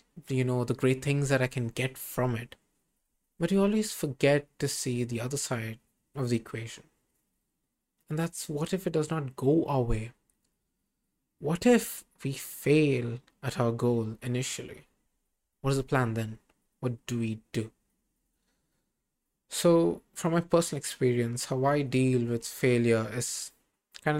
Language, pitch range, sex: English, 125-155 Hz, male